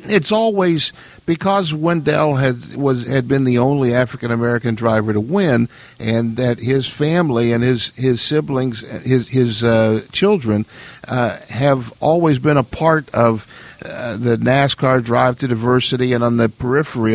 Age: 50-69